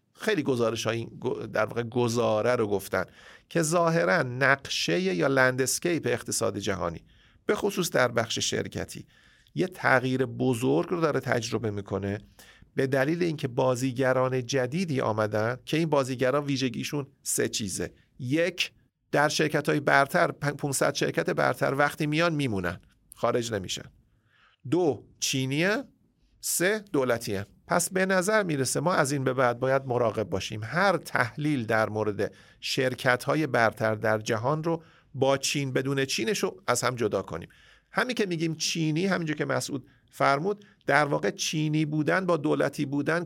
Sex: male